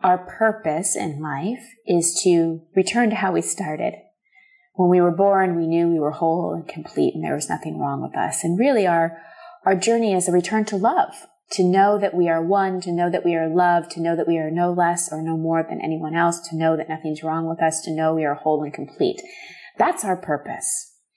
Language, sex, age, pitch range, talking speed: English, female, 30-49, 160-210 Hz, 230 wpm